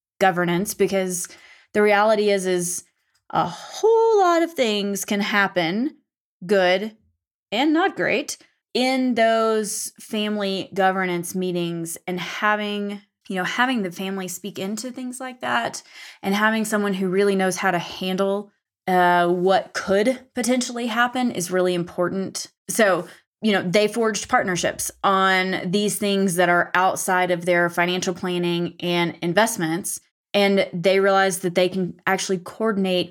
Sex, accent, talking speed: female, American, 140 wpm